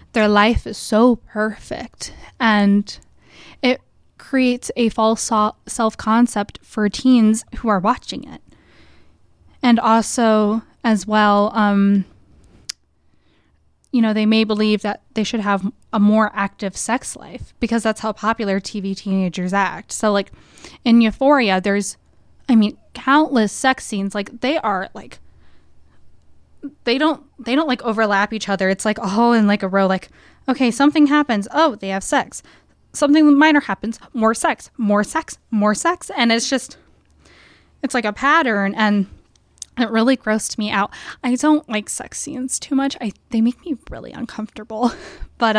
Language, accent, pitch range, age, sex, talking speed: English, American, 205-245 Hz, 10-29, female, 155 wpm